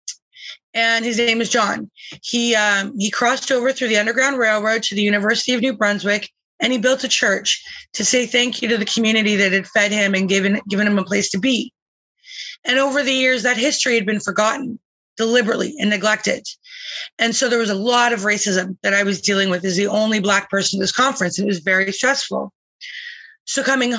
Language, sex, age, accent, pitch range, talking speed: English, female, 20-39, American, 200-245 Hz, 210 wpm